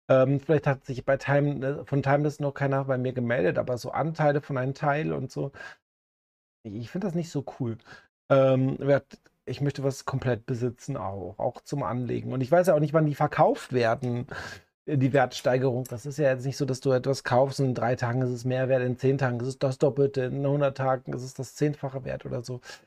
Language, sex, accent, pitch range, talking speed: German, male, German, 130-150 Hz, 225 wpm